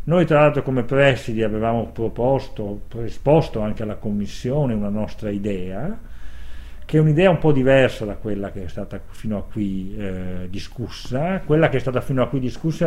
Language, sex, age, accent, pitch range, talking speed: Italian, male, 50-69, native, 105-145 Hz, 175 wpm